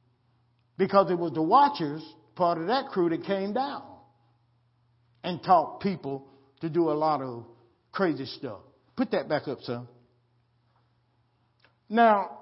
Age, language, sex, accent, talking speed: 50-69, English, male, American, 135 wpm